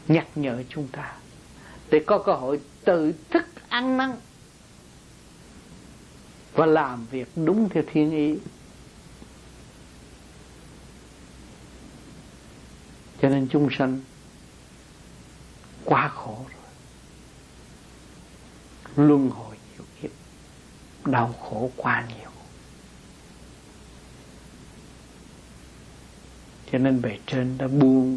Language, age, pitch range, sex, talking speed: Vietnamese, 60-79, 125-160 Hz, male, 85 wpm